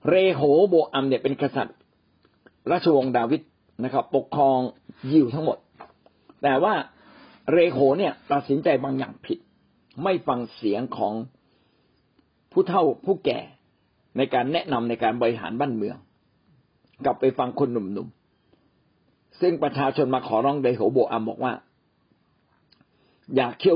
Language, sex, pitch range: Thai, male, 125-170 Hz